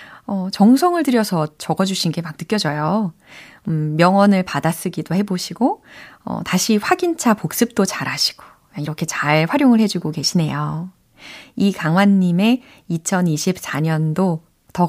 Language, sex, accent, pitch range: Korean, female, native, 165-265 Hz